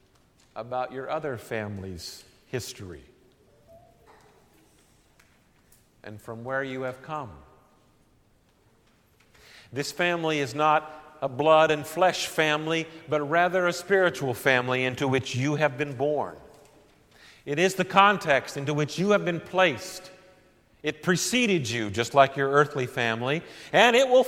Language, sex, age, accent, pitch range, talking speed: English, male, 50-69, American, 130-175 Hz, 130 wpm